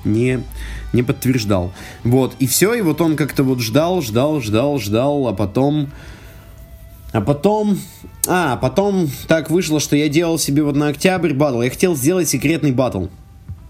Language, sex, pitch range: Russian, male, 105-150 Hz